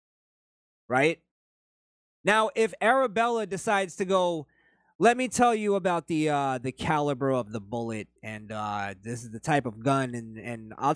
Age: 30-49